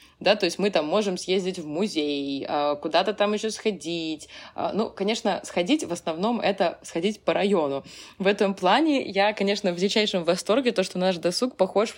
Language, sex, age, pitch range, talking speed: Russian, female, 20-39, 160-200 Hz, 175 wpm